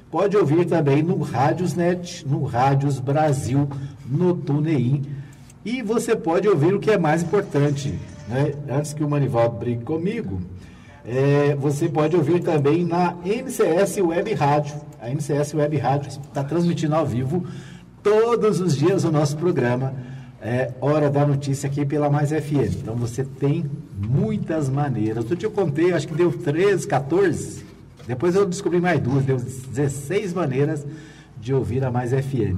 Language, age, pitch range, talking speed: Portuguese, 50-69, 130-165 Hz, 155 wpm